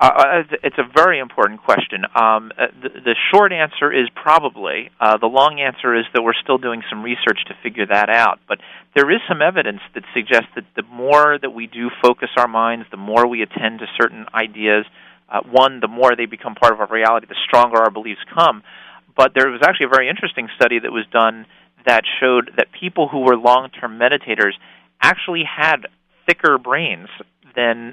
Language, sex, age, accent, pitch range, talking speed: English, male, 40-59, American, 110-125 Hz, 195 wpm